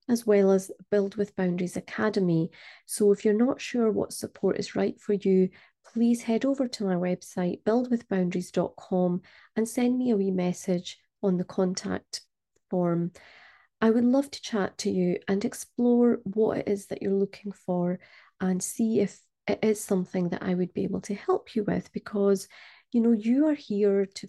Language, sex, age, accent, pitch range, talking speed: English, female, 30-49, British, 185-220 Hz, 180 wpm